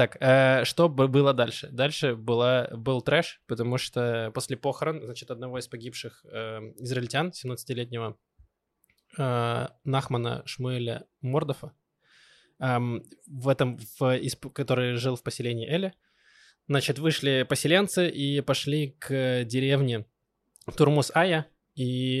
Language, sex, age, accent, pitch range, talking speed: Russian, male, 20-39, native, 125-145 Hz, 115 wpm